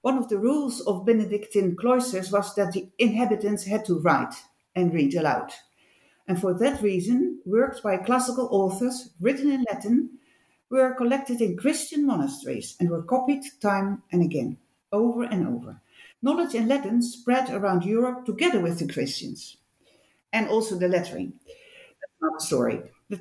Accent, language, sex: Dutch, English, female